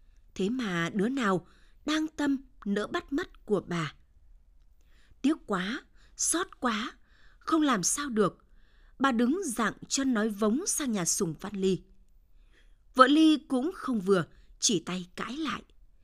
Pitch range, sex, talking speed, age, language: 190-260 Hz, female, 145 wpm, 20-39, Vietnamese